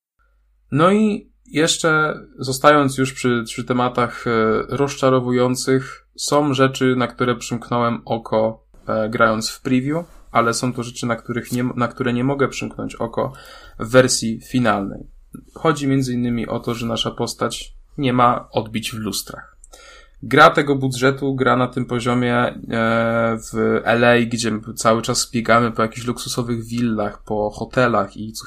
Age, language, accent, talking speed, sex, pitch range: 10-29, Polish, native, 150 wpm, male, 115-135 Hz